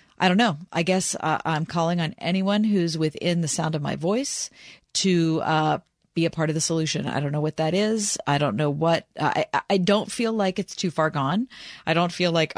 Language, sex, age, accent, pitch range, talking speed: English, female, 40-59, American, 155-185 Hz, 240 wpm